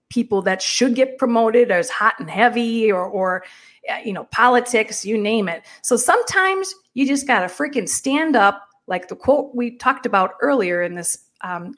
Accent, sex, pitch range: American, female, 205-300 Hz